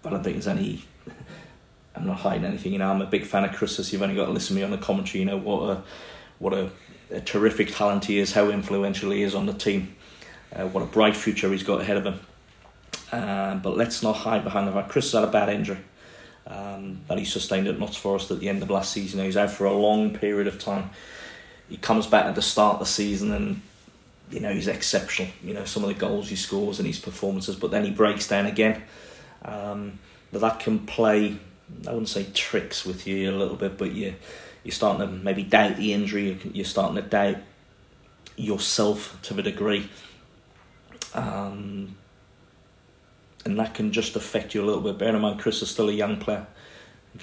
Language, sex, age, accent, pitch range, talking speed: English, male, 30-49, British, 100-110 Hz, 220 wpm